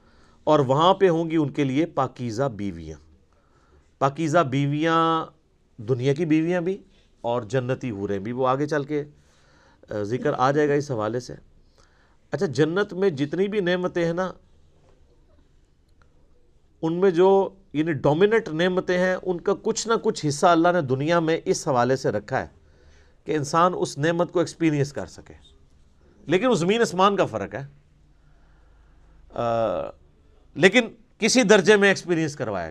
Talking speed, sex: 155 wpm, male